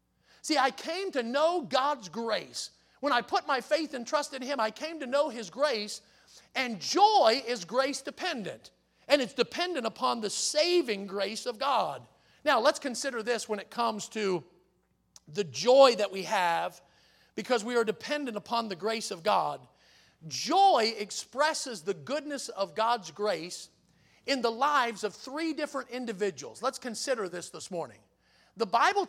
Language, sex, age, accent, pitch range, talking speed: English, male, 40-59, American, 210-285 Hz, 165 wpm